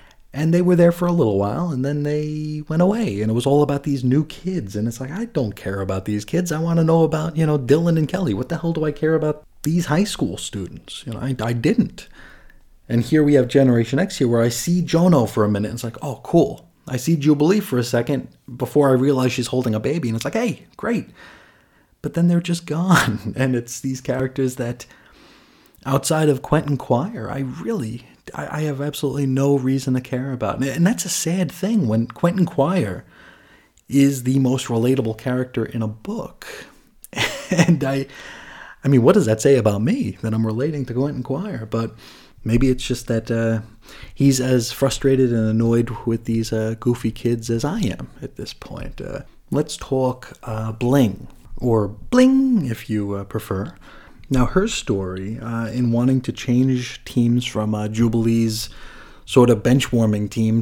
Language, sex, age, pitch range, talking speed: English, male, 30-49, 110-145 Hz, 195 wpm